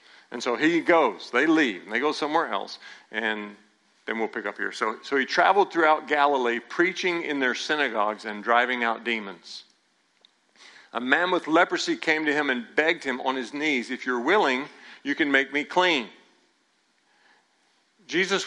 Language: English